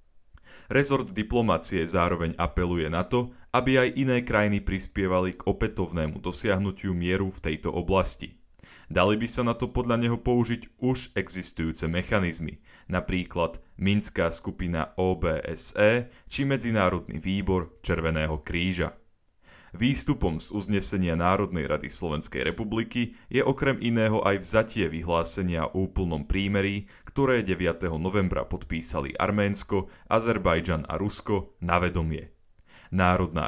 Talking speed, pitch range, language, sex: 115 wpm, 85-110 Hz, Slovak, male